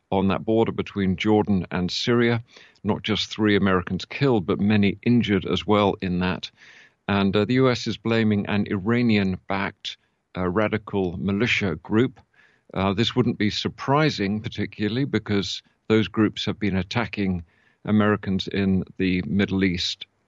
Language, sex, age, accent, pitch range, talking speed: English, male, 50-69, British, 95-110 Hz, 140 wpm